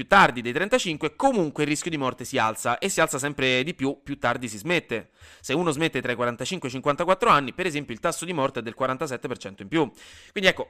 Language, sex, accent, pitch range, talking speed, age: Italian, male, native, 125-175 Hz, 245 wpm, 30-49